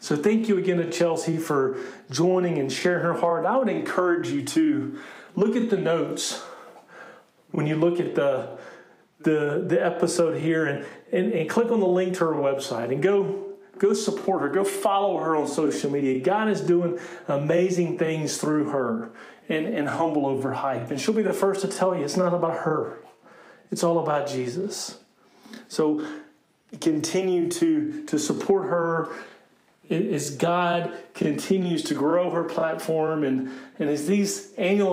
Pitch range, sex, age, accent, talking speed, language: 160-195 Hz, male, 40-59, American, 165 wpm, English